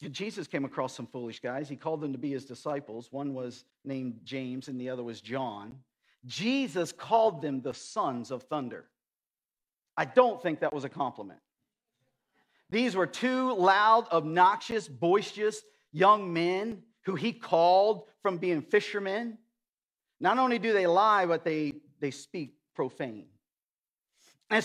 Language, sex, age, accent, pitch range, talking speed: English, male, 50-69, American, 160-235 Hz, 150 wpm